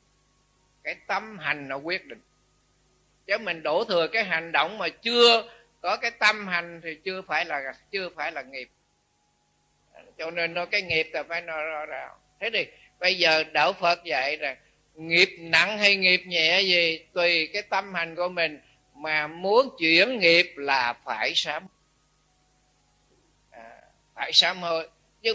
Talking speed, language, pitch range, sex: 160 wpm, Vietnamese, 160-205 Hz, male